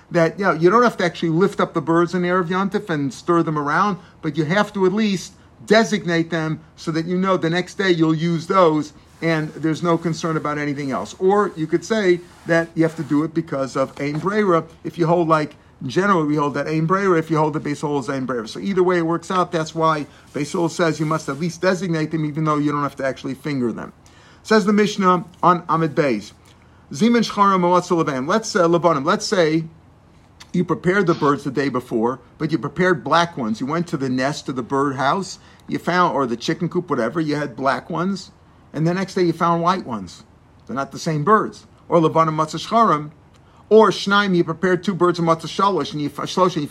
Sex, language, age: male, English, 50-69